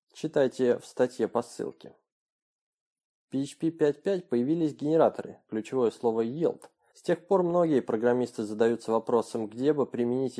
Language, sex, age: Russian, male, 20-39